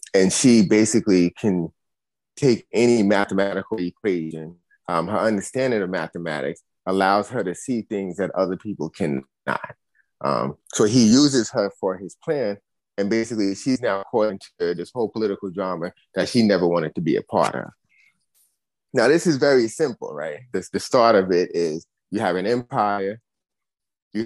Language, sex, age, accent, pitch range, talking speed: English, male, 30-49, American, 90-115 Hz, 160 wpm